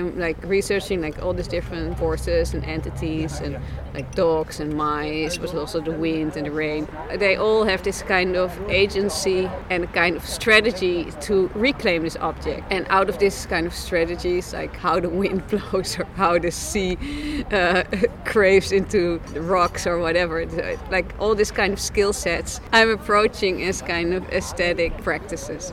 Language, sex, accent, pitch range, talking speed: English, female, Dutch, 160-190 Hz, 175 wpm